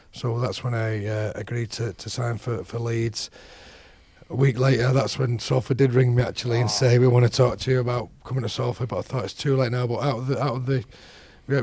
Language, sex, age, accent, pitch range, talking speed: English, male, 30-49, British, 110-125 Hz, 255 wpm